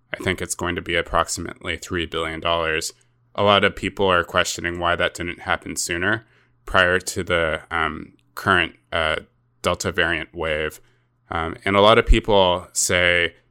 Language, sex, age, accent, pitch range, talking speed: English, male, 20-39, American, 90-110 Hz, 160 wpm